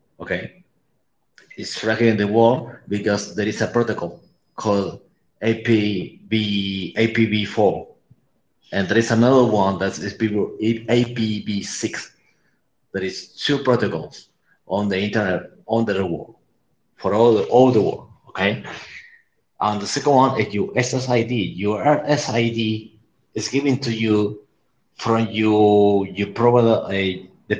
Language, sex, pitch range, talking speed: English, male, 100-120 Hz, 125 wpm